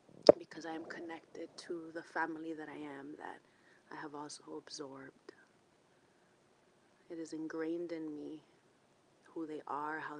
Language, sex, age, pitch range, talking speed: English, female, 30-49, 160-180 Hz, 130 wpm